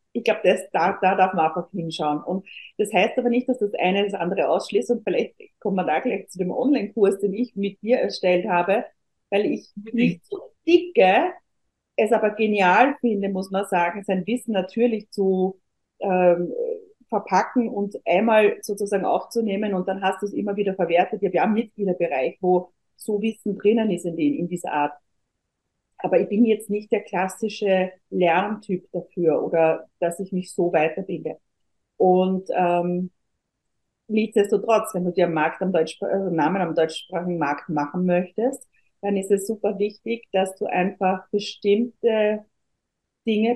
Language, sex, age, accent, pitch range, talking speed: German, female, 40-59, German, 180-215 Hz, 160 wpm